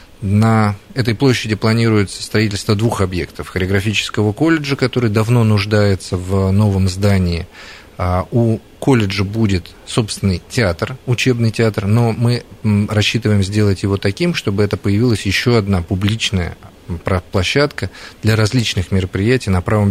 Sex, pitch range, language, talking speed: male, 95-110 Hz, Russian, 120 wpm